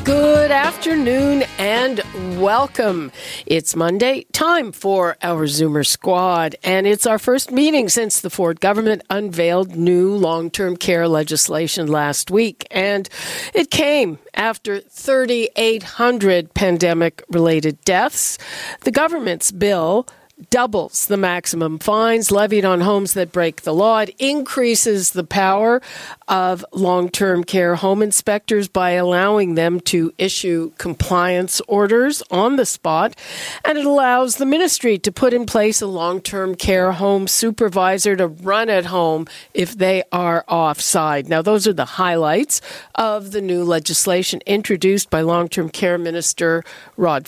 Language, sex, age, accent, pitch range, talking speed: English, female, 50-69, American, 175-225 Hz, 130 wpm